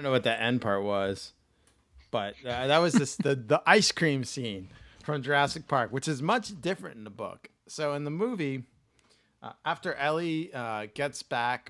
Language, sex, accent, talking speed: English, male, American, 195 wpm